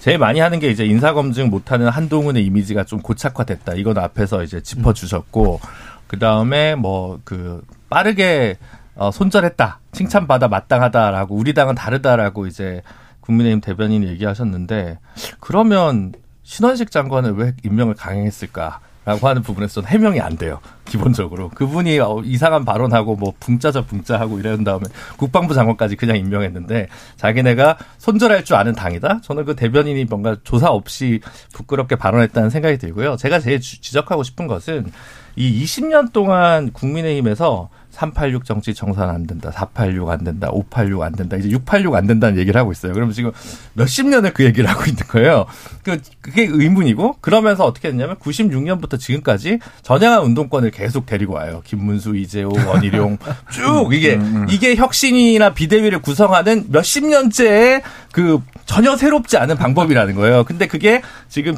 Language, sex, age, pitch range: Korean, male, 40-59, 105-155 Hz